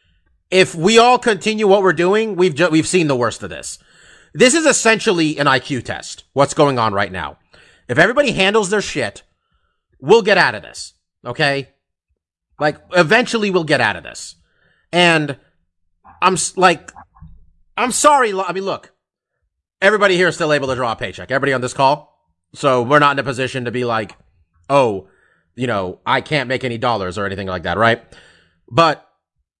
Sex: male